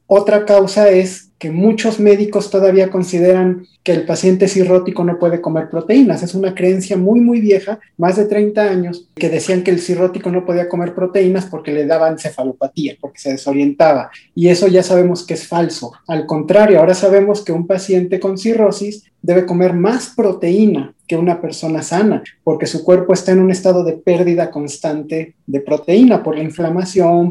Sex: male